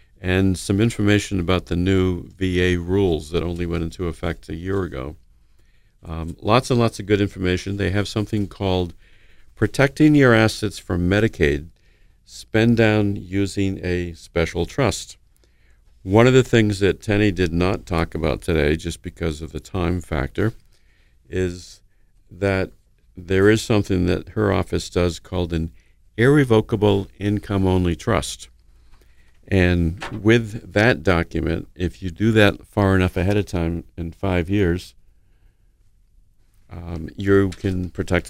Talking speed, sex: 140 wpm, male